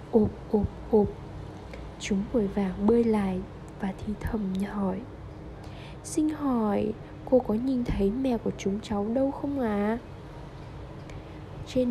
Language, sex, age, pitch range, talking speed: Vietnamese, female, 10-29, 205-260 Hz, 135 wpm